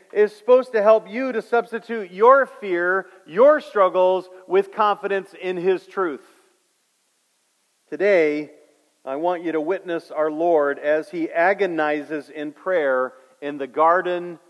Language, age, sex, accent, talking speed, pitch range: English, 40-59, male, American, 135 wpm, 165-205 Hz